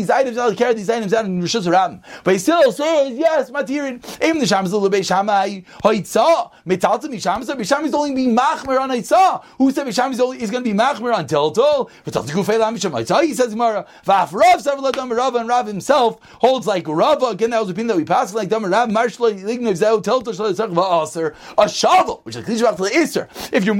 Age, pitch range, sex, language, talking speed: 30-49, 205-265 Hz, male, English, 240 wpm